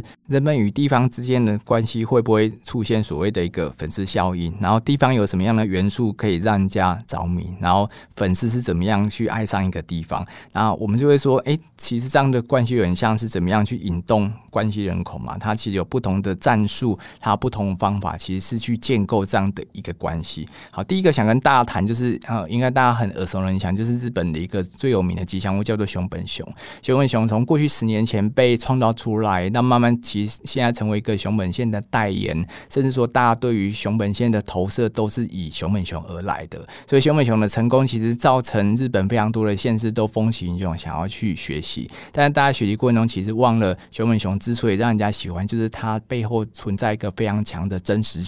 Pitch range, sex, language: 95-120 Hz, male, Chinese